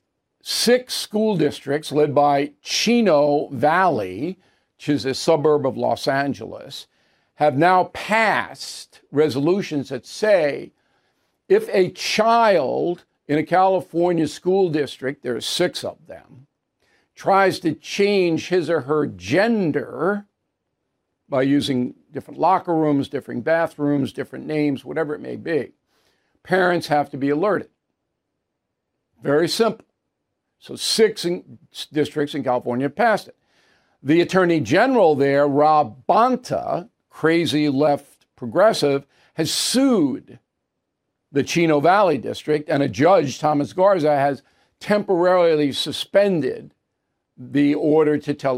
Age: 50-69